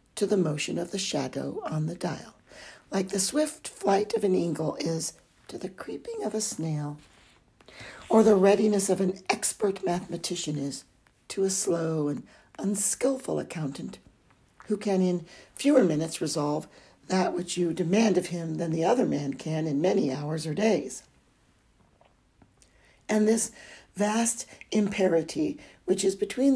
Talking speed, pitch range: 150 wpm, 155-205 Hz